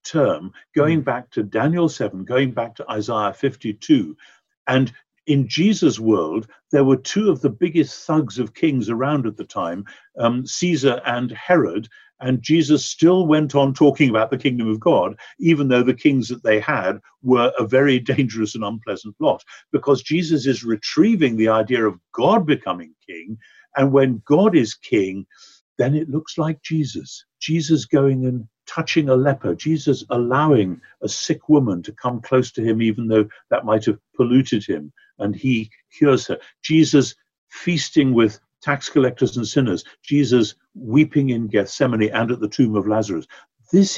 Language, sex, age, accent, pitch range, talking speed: English, male, 60-79, British, 115-145 Hz, 165 wpm